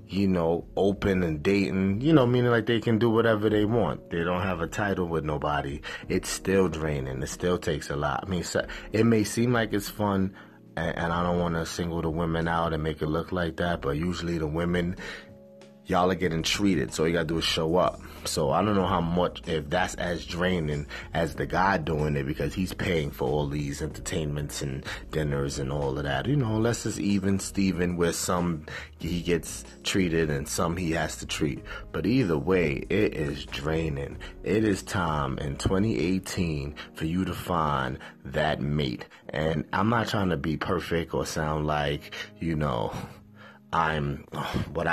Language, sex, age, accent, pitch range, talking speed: English, male, 30-49, American, 80-95 Hz, 195 wpm